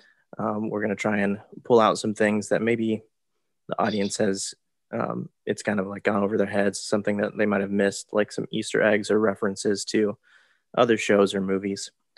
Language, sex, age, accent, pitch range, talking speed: English, male, 20-39, American, 100-115 Hz, 190 wpm